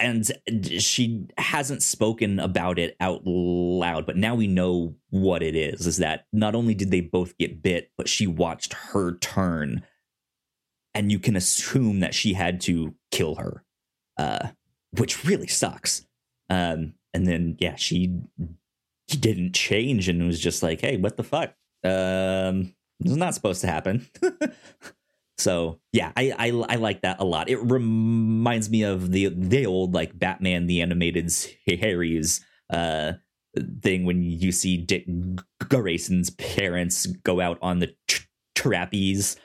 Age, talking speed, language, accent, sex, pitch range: 30-49, 150 wpm, English, American, male, 90-105 Hz